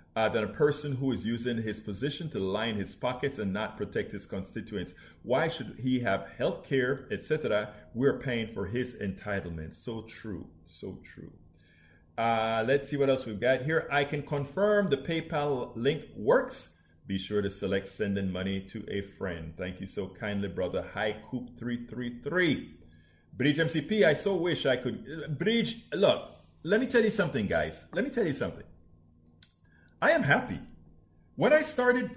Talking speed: 170 wpm